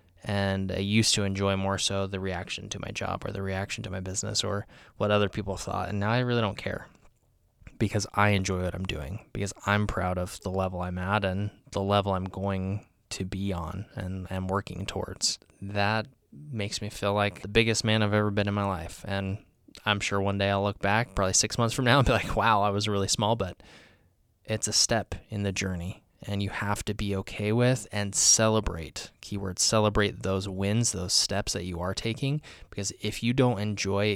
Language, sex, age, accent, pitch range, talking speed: English, male, 20-39, American, 95-105 Hz, 215 wpm